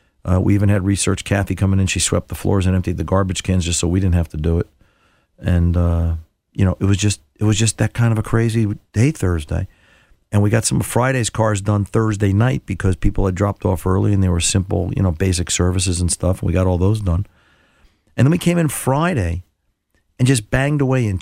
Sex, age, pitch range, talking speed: male, 50-69, 90-115 Hz, 240 wpm